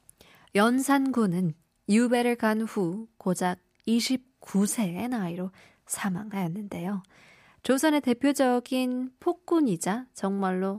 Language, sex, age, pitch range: Korean, female, 20-39, 185-235 Hz